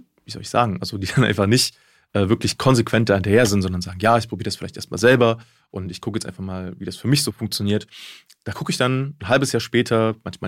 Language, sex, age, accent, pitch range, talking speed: German, male, 20-39, German, 100-120 Hz, 260 wpm